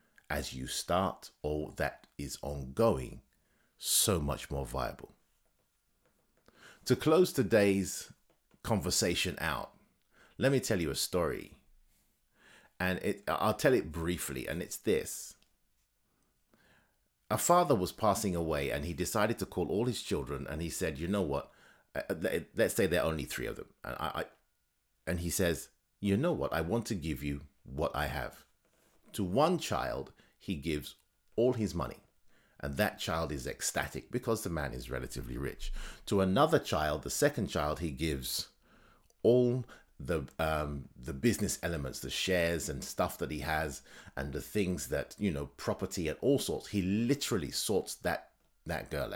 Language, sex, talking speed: English, male, 160 wpm